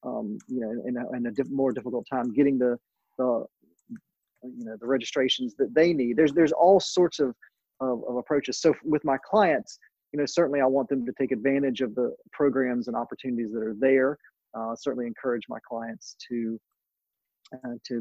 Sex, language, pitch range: male, English, 120-145 Hz